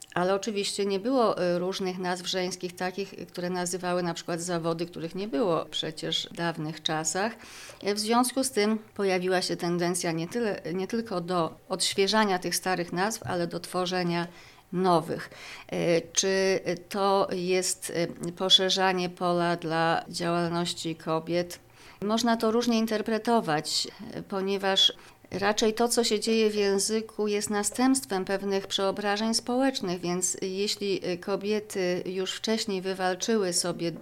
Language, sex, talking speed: Polish, female, 125 wpm